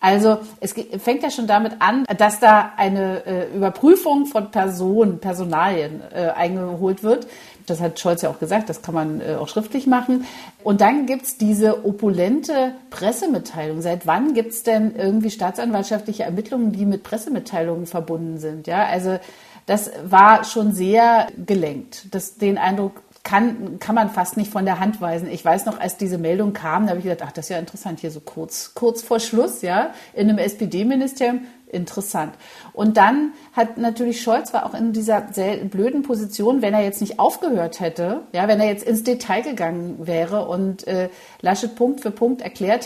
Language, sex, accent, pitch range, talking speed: German, female, German, 175-225 Hz, 180 wpm